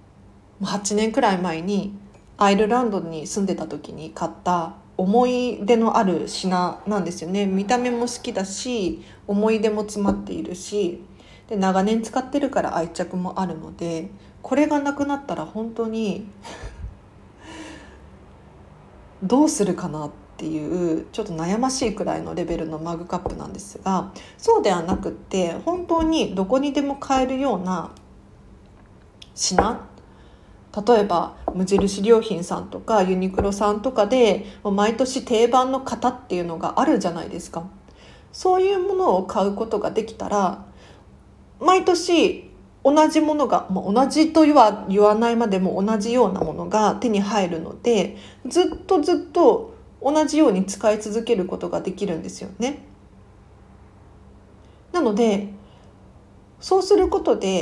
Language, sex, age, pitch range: Japanese, female, 40-59, 180-255 Hz